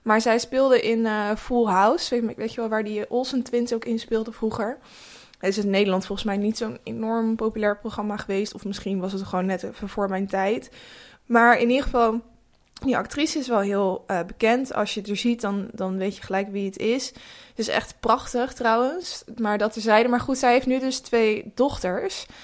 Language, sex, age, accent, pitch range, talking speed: Dutch, female, 20-39, Dutch, 200-245 Hz, 210 wpm